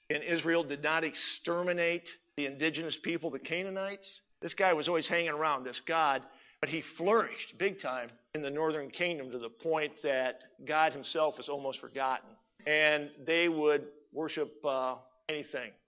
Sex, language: male, English